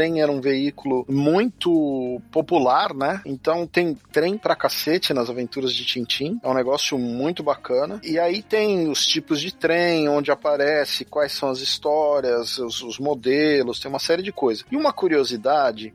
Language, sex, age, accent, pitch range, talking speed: Portuguese, male, 40-59, Brazilian, 140-180 Hz, 170 wpm